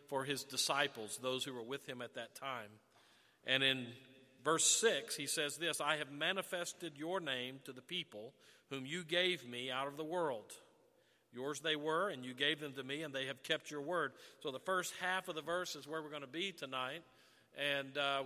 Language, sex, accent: English, male, American